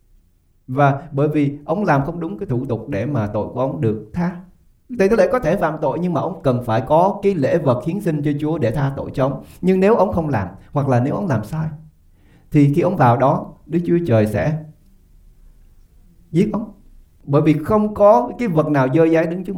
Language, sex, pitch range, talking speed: English, male, 130-170 Hz, 225 wpm